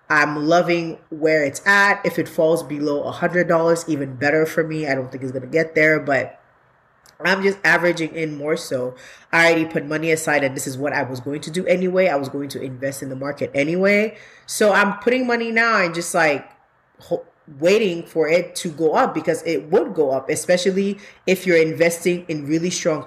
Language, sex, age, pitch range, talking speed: English, female, 20-39, 155-195 Hz, 205 wpm